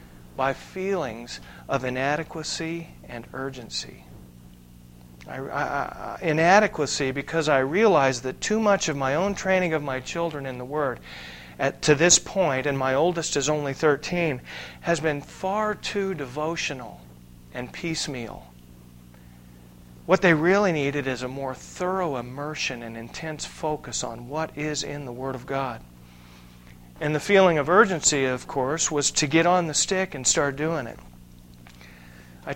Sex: male